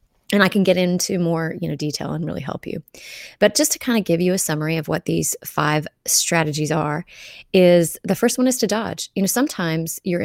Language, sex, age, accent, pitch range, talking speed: English, female, 20-39, American, 160-200 Hz, 230 wpm